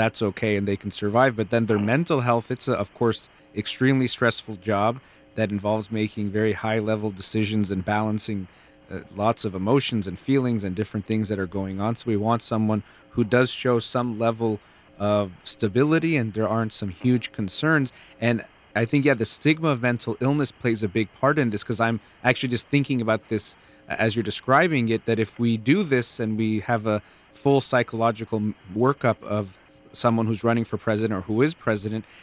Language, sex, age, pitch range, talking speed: English, male, 30-49, 105-125 Hz, 195 wpm